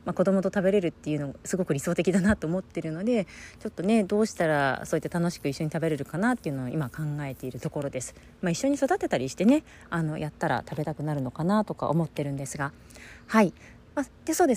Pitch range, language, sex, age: 150-215 Hz, Japanese, female, 30-49